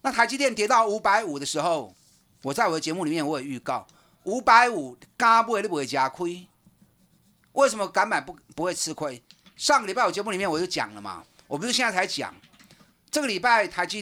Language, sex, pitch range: Chinese, male, 140-220 Hz